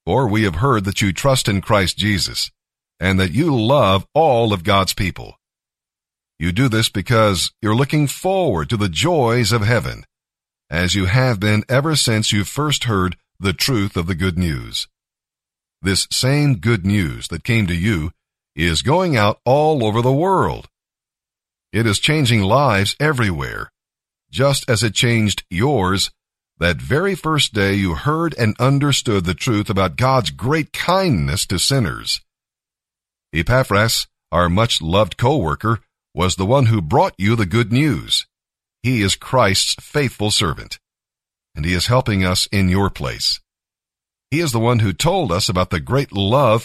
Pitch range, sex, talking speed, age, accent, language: 95-130 Hz, male, 160 wpm, 50-69, American, English